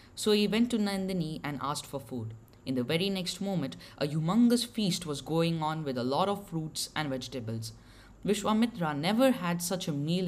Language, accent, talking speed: English, Indian, 195 wpm